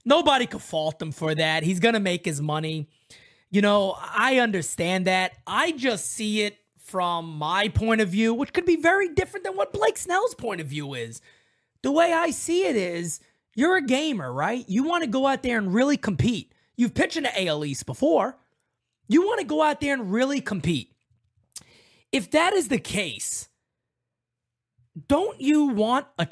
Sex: male